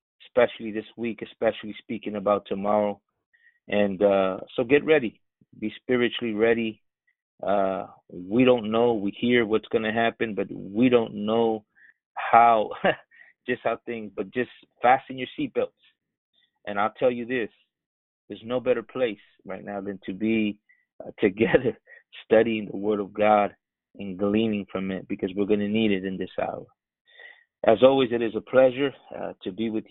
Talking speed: 165 wpm